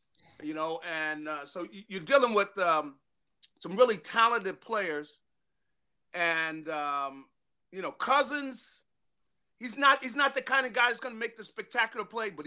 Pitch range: 180-245 Hz